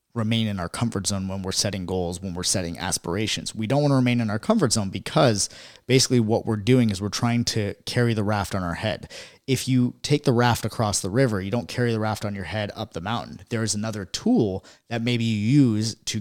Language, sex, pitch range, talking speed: English, male, 95-120 Hz, 240 wpm